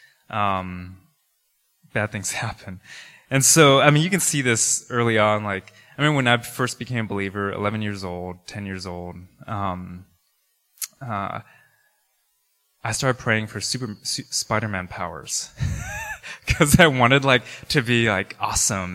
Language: English